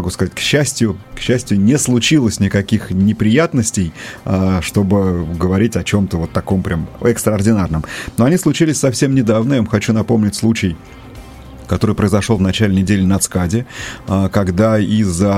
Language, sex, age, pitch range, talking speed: Russian, male, 30-49, 95-115 Hz, 145 wpm